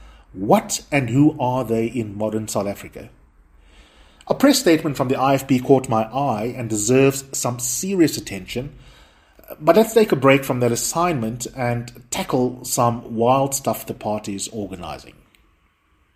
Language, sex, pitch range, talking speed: English, male, 110-140 Hz, 150 wpm